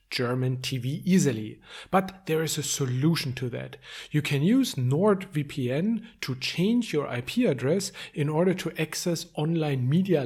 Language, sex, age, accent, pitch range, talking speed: German, male, 40-59, German, 135-175 Hz, 145 wpm